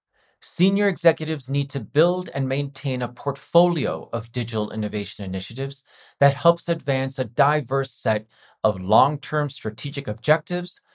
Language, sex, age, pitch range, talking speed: English, male, 40-59, 120-160 Hz, 125 wpm